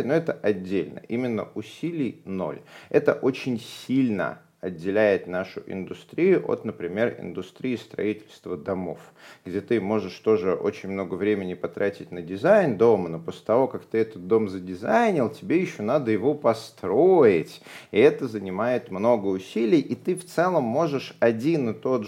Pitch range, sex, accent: 100-130 Hz, male, native